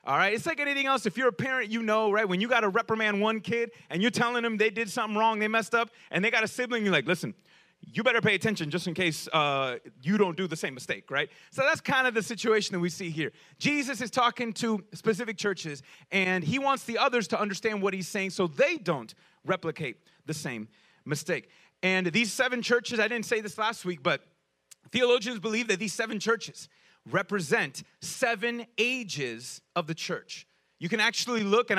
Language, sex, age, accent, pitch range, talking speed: English, male, 30-49, American, 170-235 Hz, 215 wpm